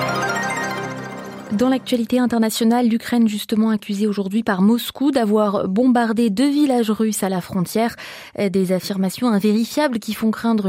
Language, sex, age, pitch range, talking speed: French, female, 20-39, 200-255 Hz, 130 wpm